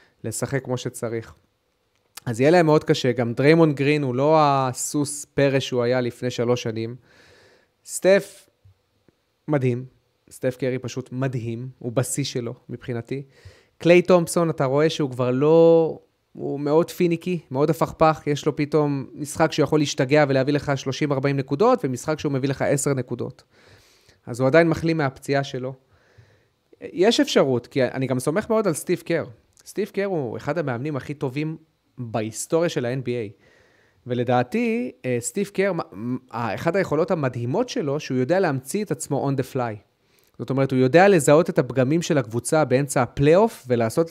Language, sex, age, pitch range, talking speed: Hebrew, male, 30-49, 120-155 Hz, 150 wpm